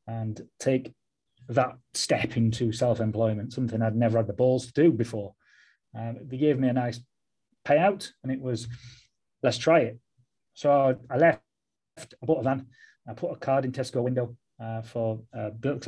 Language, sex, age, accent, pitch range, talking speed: English, male, 30-49, British, 115-140 Hz, 175 wpm